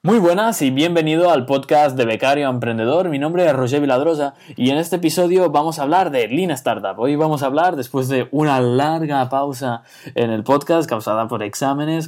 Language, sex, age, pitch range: Spanish, male, 20-39, 120-155 Hz